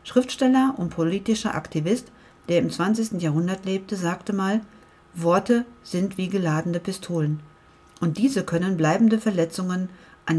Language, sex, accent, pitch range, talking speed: German, female, German, 165-210 Hz, 125 wpm